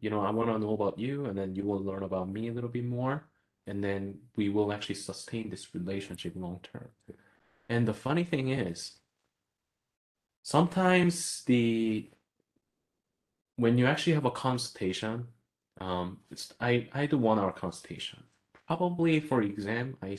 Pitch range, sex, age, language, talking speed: 100-125 Hz, male, 20-39, English, 160 wpm